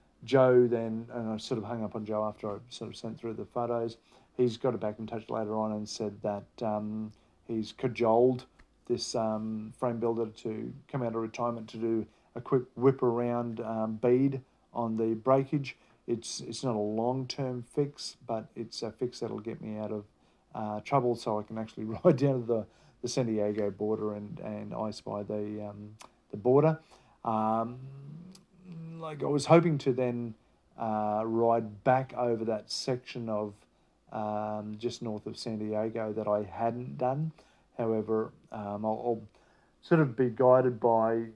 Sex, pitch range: male, 110-125 Hz